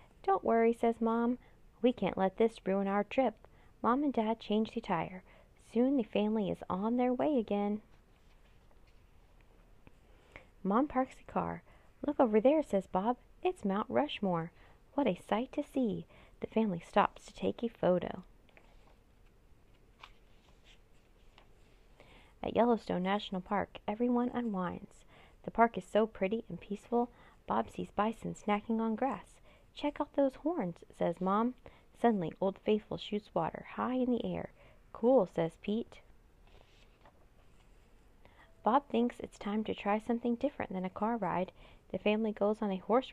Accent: American